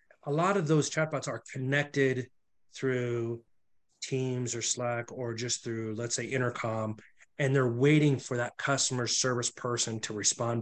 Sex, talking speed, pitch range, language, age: male, 155 wpm, 120-145 Hz, English, 30-49